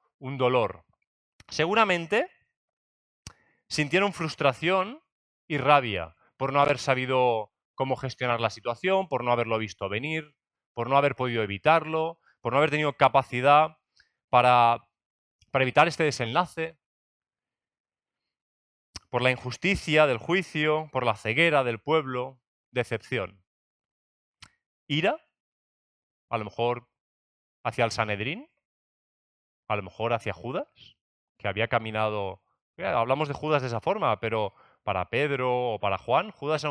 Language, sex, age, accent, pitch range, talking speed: Spanish, male, 30-49, Spanish, 110-150 Hz, 125 wpm